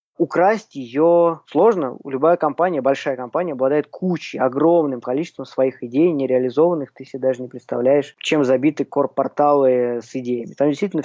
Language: Russian